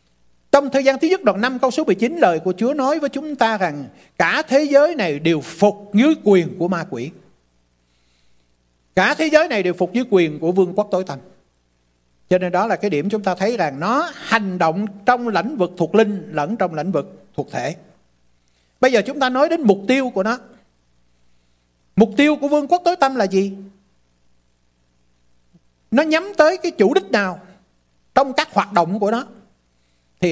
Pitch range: 135-225 Hz